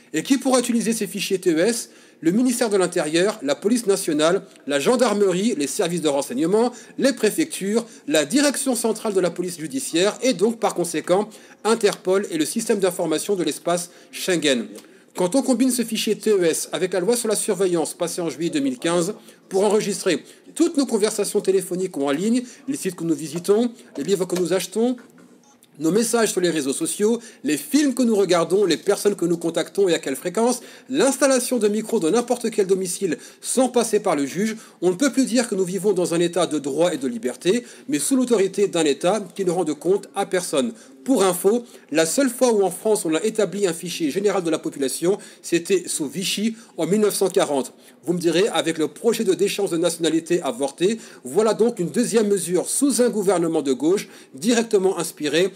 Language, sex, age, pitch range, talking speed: French, male, 40-59, 175-235 Hz, 195 wpm